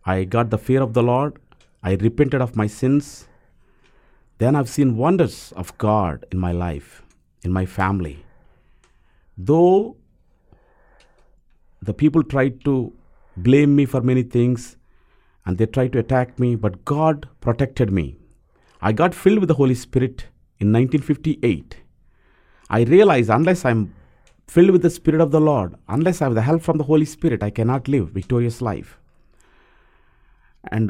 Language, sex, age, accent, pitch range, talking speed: English, male, 50-69, Indian, 105-155 Hz, 155 wpm